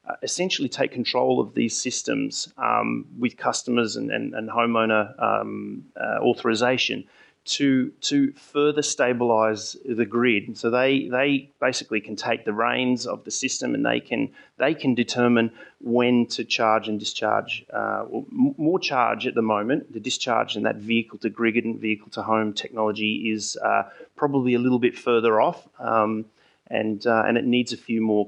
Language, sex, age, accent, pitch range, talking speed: English, male, 30-49, Australian, 110-130 Hz, 175 wpm